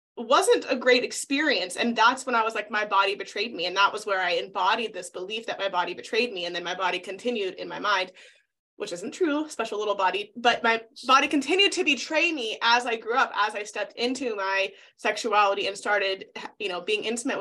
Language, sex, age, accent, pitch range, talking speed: English, female, 20-39, American, 195-285 Hz, 220 wpm